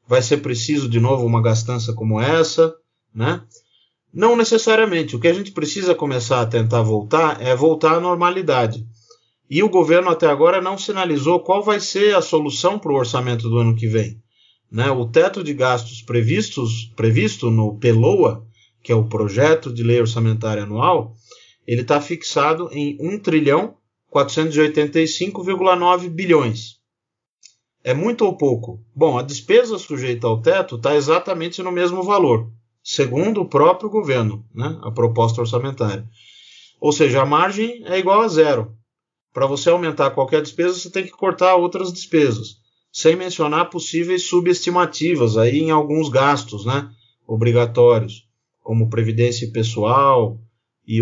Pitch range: 115-170 Hz